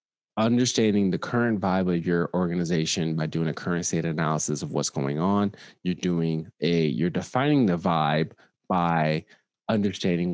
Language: English